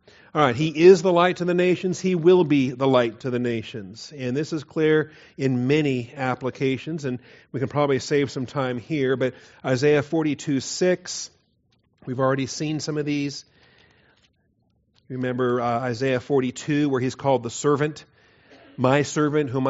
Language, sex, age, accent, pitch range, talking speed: English, male, 40-59, American, 130-155 Hz, 165 wpm